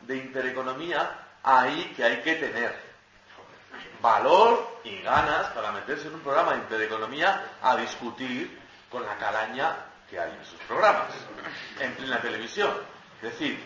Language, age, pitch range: Spanish, 40-59, 130-200 Hz